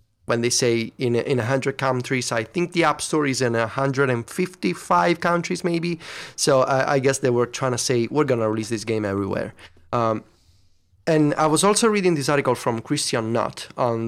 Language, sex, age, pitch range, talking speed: English, male, 30-49, 120-155 Hz, 190 wpm